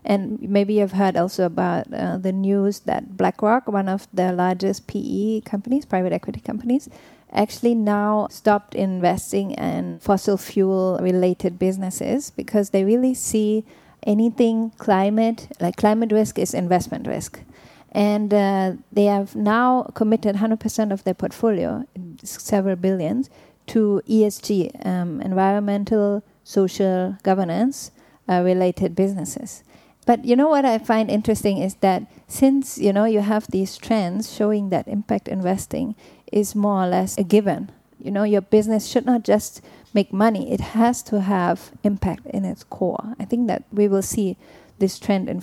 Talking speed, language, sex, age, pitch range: 150 wpm, English, female, 30-49, 190-225 Hz